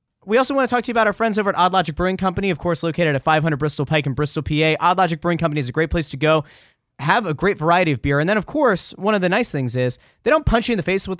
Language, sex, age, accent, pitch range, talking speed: English, male, 20-39, American, 140-170 Hz, 320 wpm